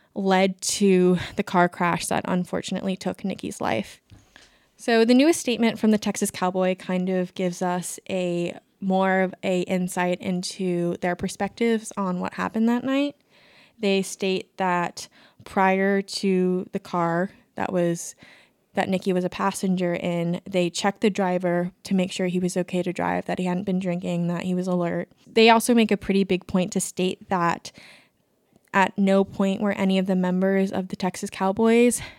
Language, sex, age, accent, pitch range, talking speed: English, female, 20-39, American, 180-200 Hz, 175 wpm